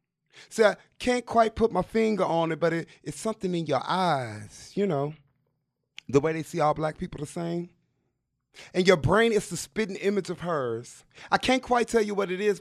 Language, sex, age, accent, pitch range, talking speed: English, male, 30-49, American, 190-230 Hz, 205 wpm